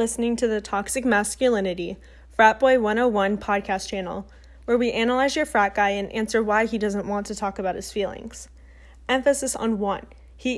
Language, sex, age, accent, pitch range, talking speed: English, female, 10-29, American, 200-240 Hz, 175 wpm